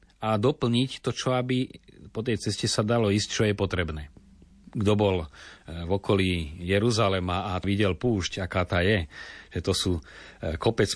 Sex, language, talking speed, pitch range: male, Slovak, 160 wpm, 90-105 Hz